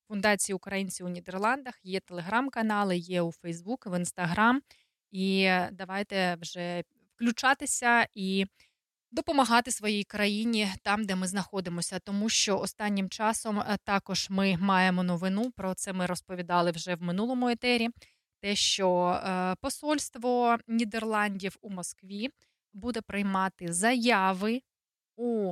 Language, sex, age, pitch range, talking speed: Dutch, female, 20-39, 185-230 Hz, 115 wpm